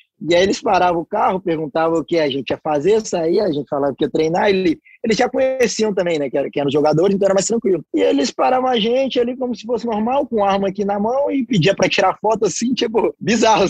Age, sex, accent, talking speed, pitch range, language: 20-39, male, Brazilian, 255 wpm, 165-225 Hz, Portuguese